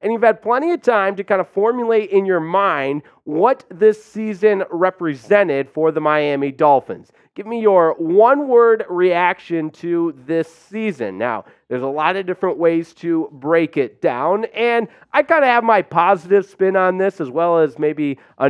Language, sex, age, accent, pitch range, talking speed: English, male, 40-59, American, 150-200 Hz, 180 wpm